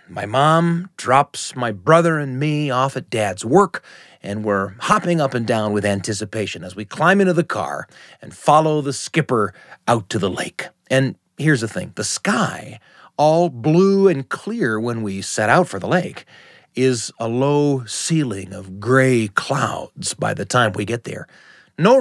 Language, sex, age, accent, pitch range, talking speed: English, male, 30-49, American, 110-150 Hz, 175 wpm